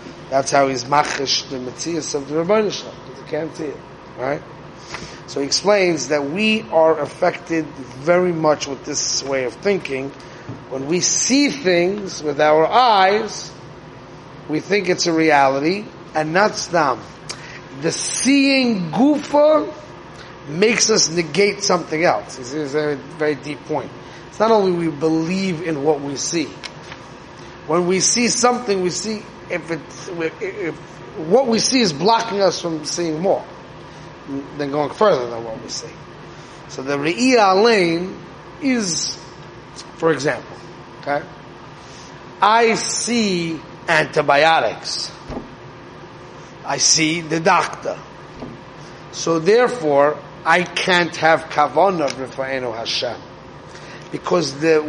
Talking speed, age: 125 wpm, 30-49